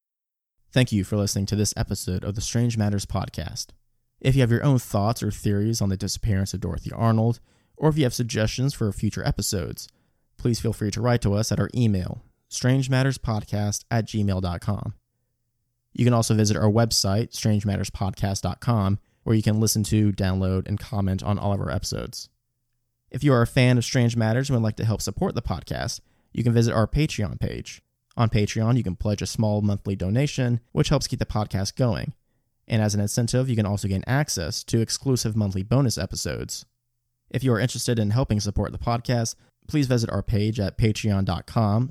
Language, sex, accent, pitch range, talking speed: English, male, American, 105-120 Hz, 190 wpm